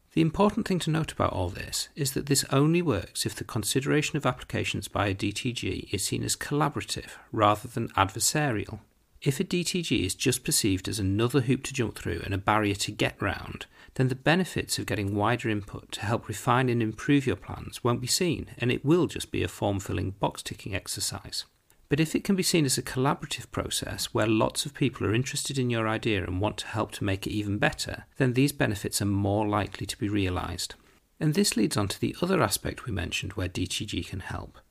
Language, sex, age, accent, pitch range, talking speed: English, male, 40-59, British, 105-145 Hz, 215 wpm